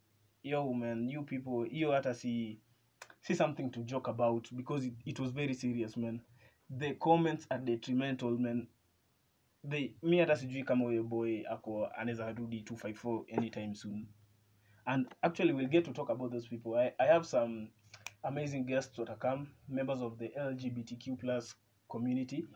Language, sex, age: Swahili, male, 20-39